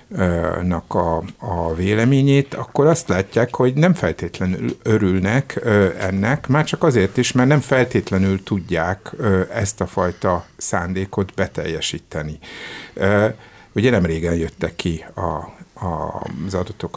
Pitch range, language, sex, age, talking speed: 90-120 Hz, Hungarian, male, 60-79, 110 wpm